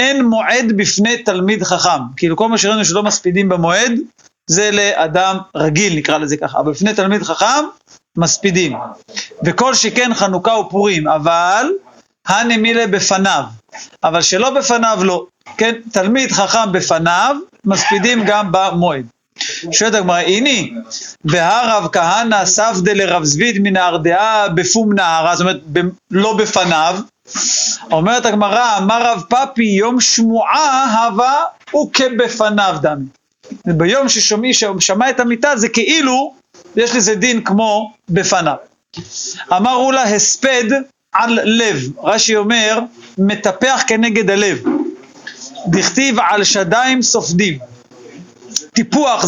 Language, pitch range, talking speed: Hebrew, 180-235 Hz, 105 wpm